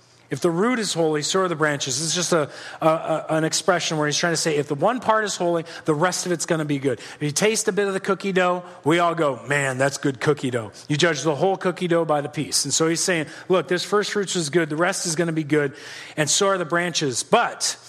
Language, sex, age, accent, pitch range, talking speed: English, male, 40-59, American, 160-205 Hz, 280 wpm